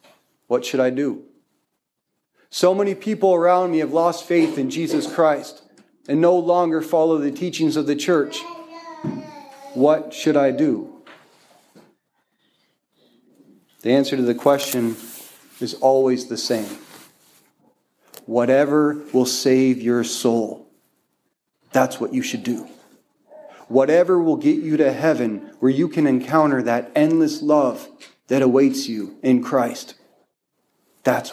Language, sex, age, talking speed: English, male, 40-59, 125 wpm